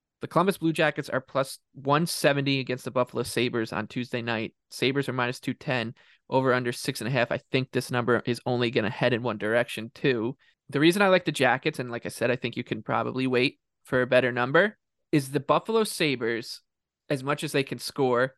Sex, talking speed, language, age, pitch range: male, 220 wpm, English, 20-39, 125-145 Hz